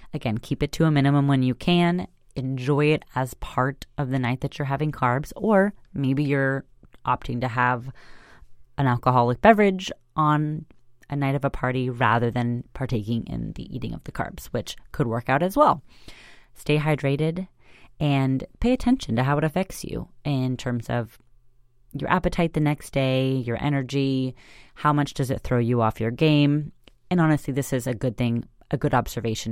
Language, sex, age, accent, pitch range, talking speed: English, female, 30-49, American, 125-150 Hz, 180 wpm